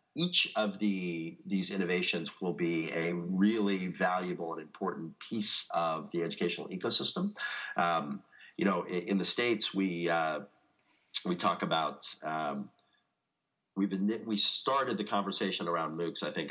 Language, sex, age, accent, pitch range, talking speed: English, male, 40-59, American, 80-100 Hz, 145 wpm